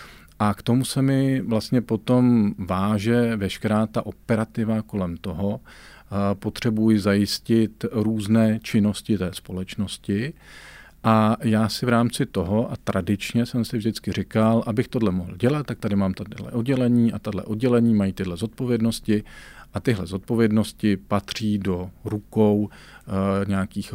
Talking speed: 135 wpm